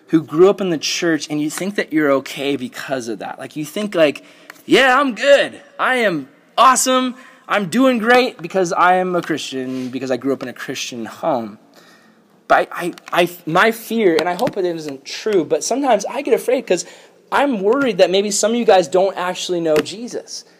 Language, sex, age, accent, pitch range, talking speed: English, male, 20-39, American, 170-245 Hz, 205 wpm